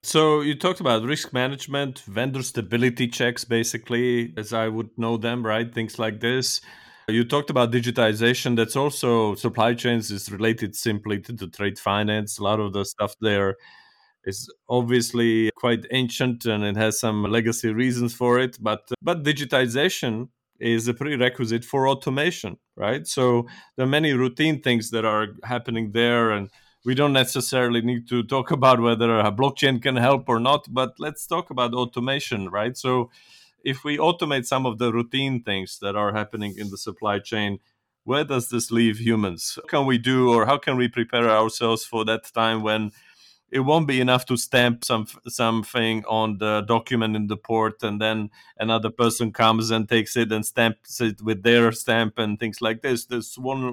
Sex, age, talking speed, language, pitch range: male, 30-49, 180 wpm, English, 110-125 Hz